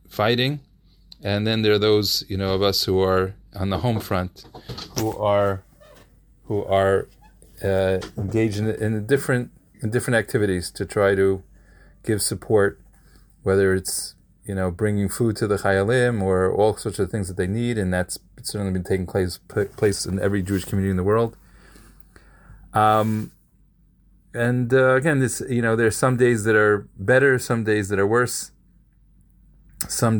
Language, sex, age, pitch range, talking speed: English, male, 30-49, 95-110 Hz, 165 wpm